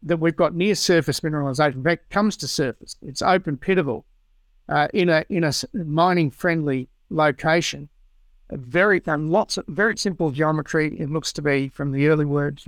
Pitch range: 145-175 Hz